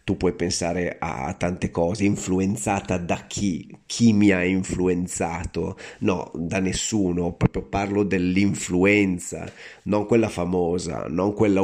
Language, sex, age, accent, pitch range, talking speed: Italian, male, 30-49, native, 90-105 Hz, 125 wpm